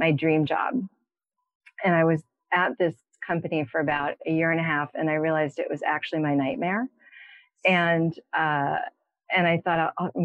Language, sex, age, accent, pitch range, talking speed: English, female, 30-49, American, 165-225 Hz, 175 wpm